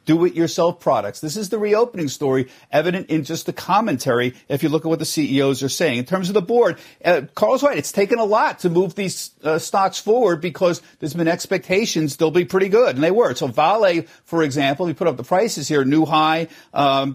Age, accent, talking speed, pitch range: 50-69, American, 220 wpm, 150-195 Hz